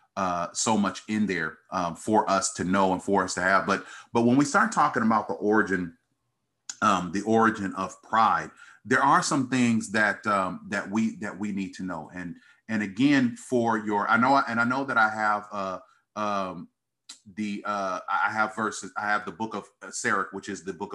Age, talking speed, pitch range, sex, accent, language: 40-59, 205 wpm, 95-115 Hz, male, American, English